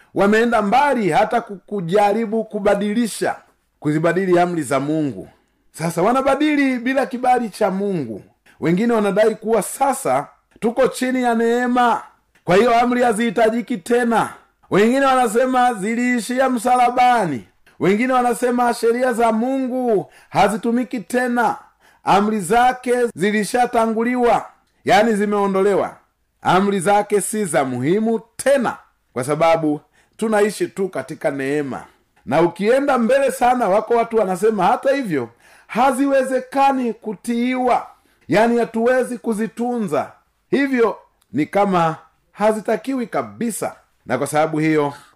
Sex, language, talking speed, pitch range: male, Swahili, 105 wpm, 170-245 Hz